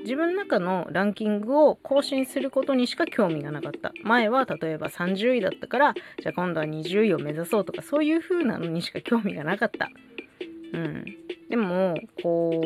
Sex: female